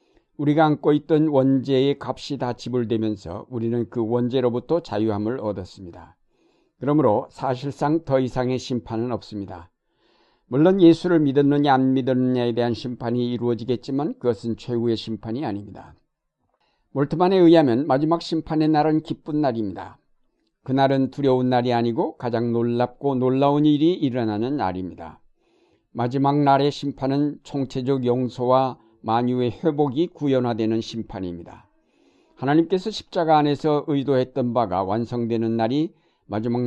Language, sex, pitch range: Korean, male, 115-145 Hz